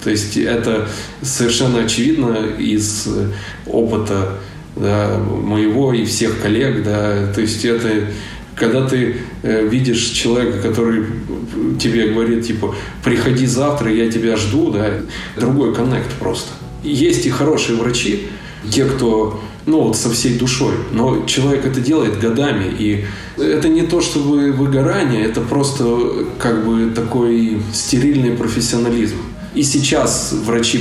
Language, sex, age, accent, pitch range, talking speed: Russian, male, 20-39, native, 110-125 Hz, 125 wpm